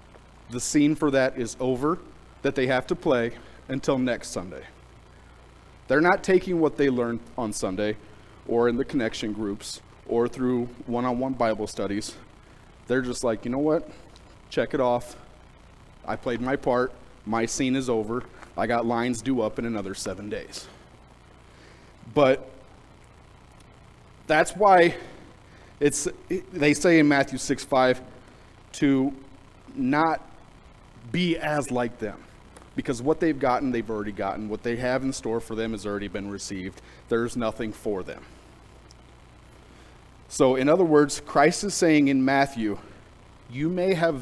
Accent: American